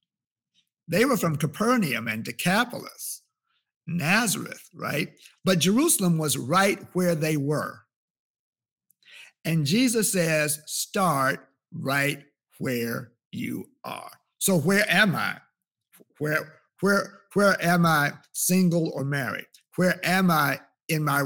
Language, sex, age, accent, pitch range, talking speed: English, male, 50-69, American, 145-190 Hz, 115 wpm